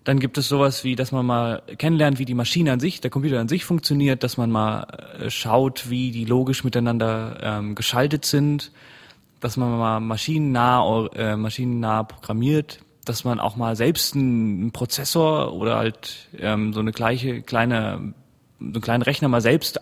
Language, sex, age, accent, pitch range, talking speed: German, male, 20-39, German, 110-135 Hz, 175 wpm